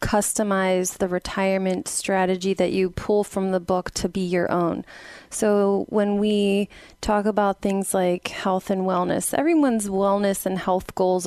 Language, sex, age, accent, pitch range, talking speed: English, female, 20-39, American, 190-230 Hz, 155 wpm